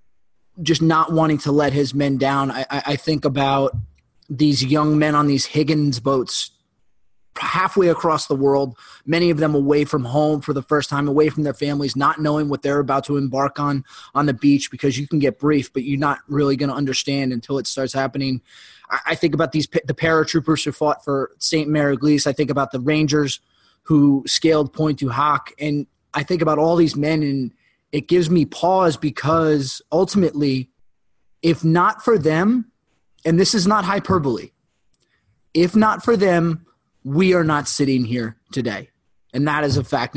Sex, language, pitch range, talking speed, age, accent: male, English, 140-160 Hz, 185 wpm, 20-39, American